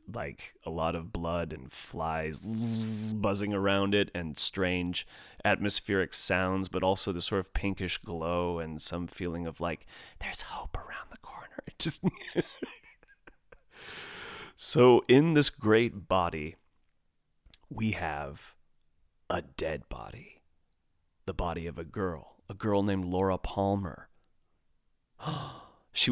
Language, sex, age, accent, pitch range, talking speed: English, male, 30-49, American, 80-105 Hz, 125 wpm